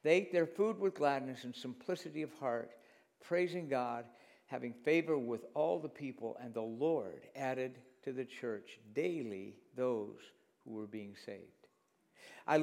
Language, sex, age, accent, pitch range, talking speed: English, male, 60-79, American, 130-170 Hz, 150 wpm